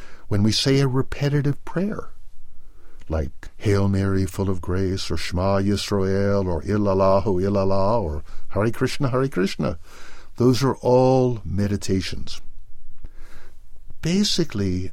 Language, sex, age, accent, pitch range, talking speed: English, male, 60-79, American, 90-120 Hz, 115 wpm